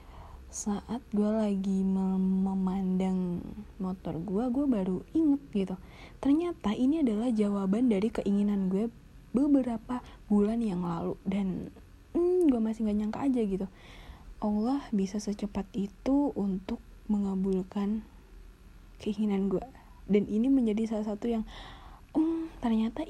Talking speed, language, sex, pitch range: 120 wpm, Indonesian, female, 185-220 Hz